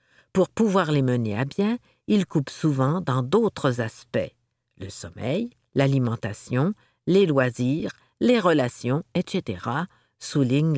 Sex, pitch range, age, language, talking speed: female, 120-170 Hz, 50-69, French, 115 wpm